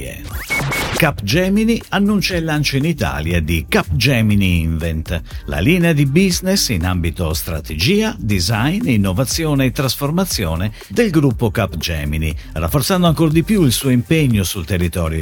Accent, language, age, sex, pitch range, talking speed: native, Italian, 50-69, male, 90-155 Hz, 125 wpm